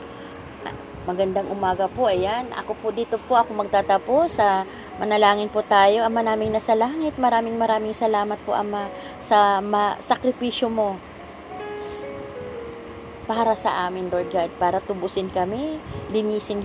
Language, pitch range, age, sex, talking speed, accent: Filipino, 185-230 Hz, 20-39, female, 130 wpm, native